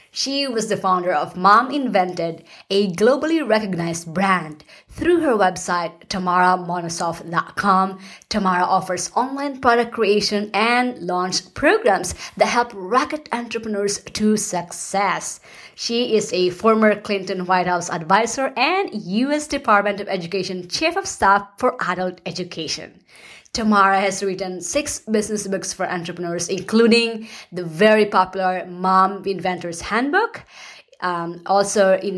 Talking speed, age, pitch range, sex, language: 125 wpm, 20-39, 180-220 Hz, female, English